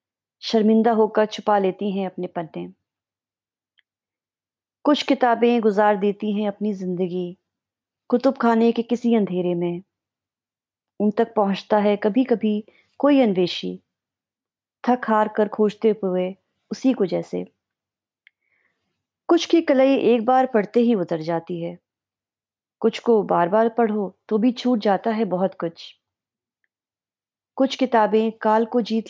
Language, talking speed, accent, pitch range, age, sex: Hindi, 130 wpm, native, 180-235 Hz, 30-49, female